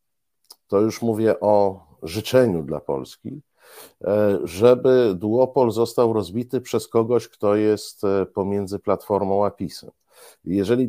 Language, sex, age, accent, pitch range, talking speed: Polish, male, 50-69, native, 95-125 Hz, 110 wpm